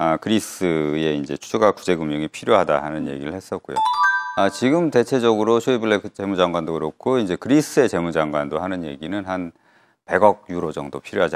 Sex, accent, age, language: male, native, 40-59, Korean